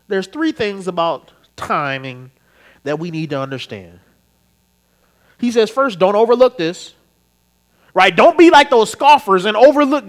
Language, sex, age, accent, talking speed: English, male, 30-49, American, 145 wpm